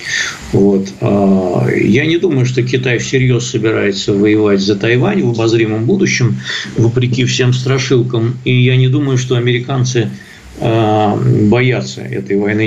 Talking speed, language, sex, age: 120 wpm, Russian, male, 50-69